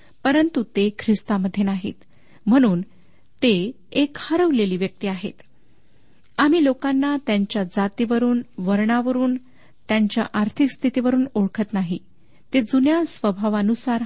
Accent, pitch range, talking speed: native, 200-255 Hz, 100 wpm